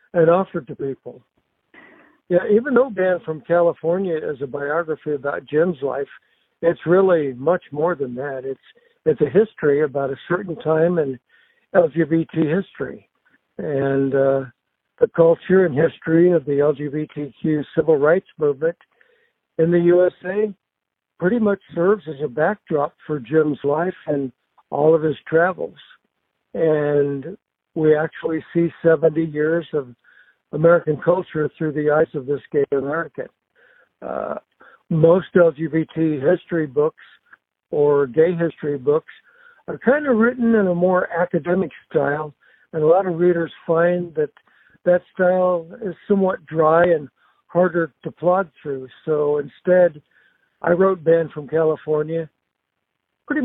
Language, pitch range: English, 150-180 Hz